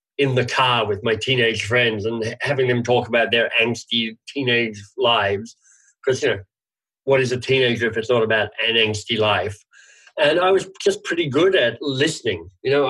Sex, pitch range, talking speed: male, 115-150 Hz, 185 wpm